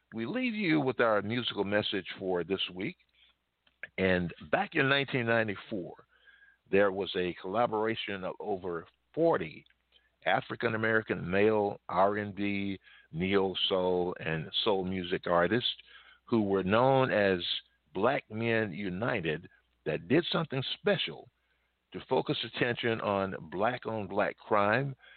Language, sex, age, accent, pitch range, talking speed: English, male, 50-69, American, 90-115 Hz, 115 wpm